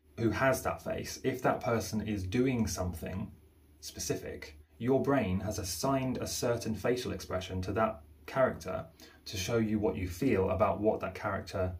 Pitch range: 95-115 Hz